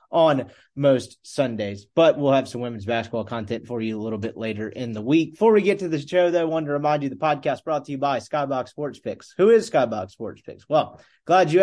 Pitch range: 130-175 Hz